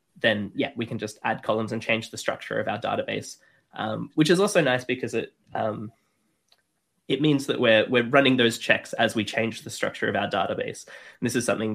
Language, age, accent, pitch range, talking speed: English, 10-29, Australian, 110-125 Hz, 215 wpm